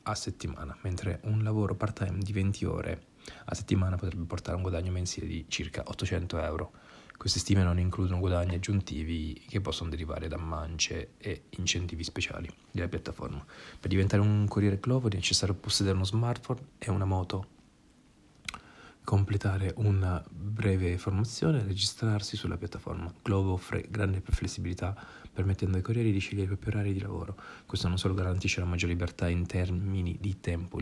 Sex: male